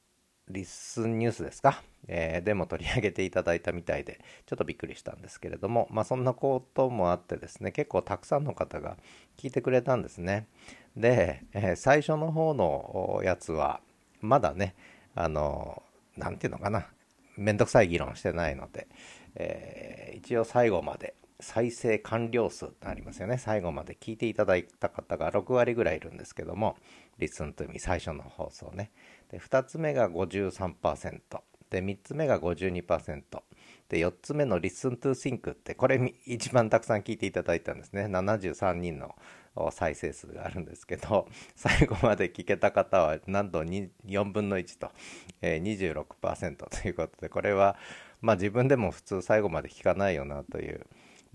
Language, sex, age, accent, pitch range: Japanese, male, 40-59, native, 90-120 Hz